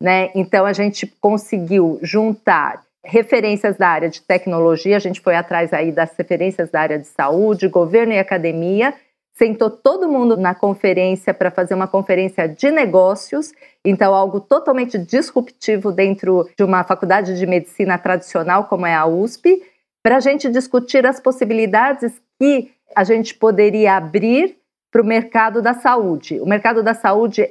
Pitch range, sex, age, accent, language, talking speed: 190-235 Hz, female, 40-59, Brazilian, Portuguese, 155 wpm